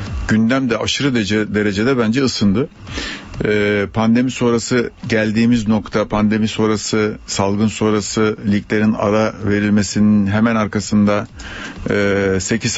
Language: Turkish